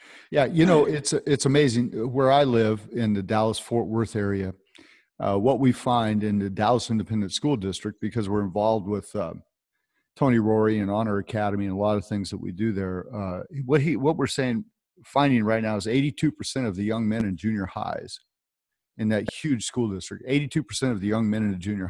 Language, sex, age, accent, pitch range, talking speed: English, male, 50-69, American, 100-130 Hz, 205 wpm